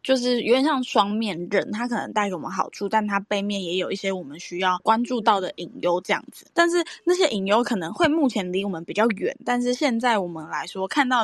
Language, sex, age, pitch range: Chinese, female, 10-29, 195-245 Hz